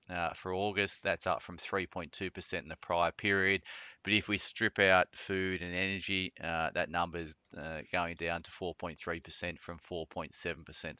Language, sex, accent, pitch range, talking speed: English, male, Australian, 85-95 Hz, 165 wpm